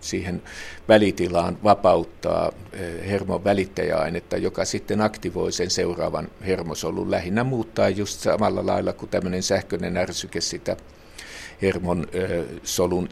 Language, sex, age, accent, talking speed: Finnish, male, 50-69, native, 105 wpm